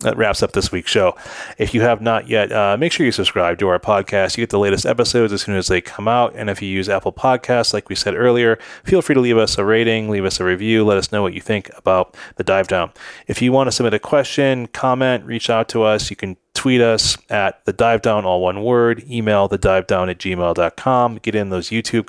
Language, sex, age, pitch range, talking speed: English, male, 30-49, 100-120 Hz, 255 wpm